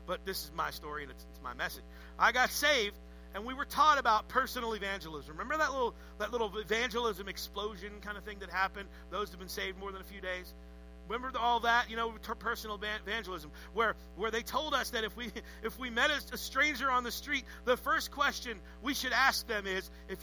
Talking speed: 215 wpm